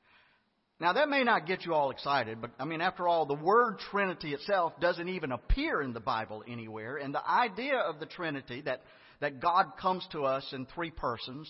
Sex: male